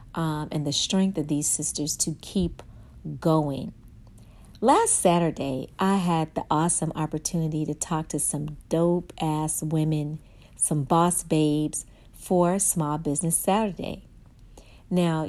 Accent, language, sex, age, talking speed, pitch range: American, English, female, 40-59, 125 wpm, 150-180 Hz